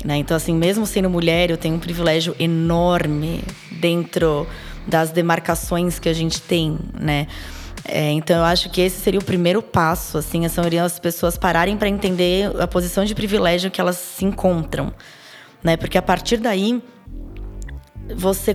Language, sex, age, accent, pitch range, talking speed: Portuguese, female, 20-39, Brazilian, 170-195 Hz, 160 wpm